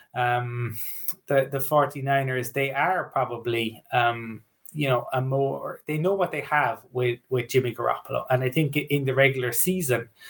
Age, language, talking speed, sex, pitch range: 20-39, English, 165 wpm, male, 125-145 Hz